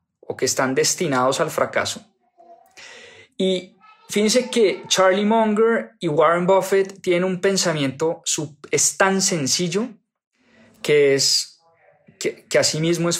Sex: male